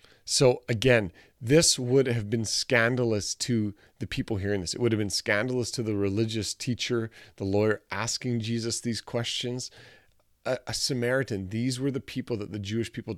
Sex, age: male, 30-49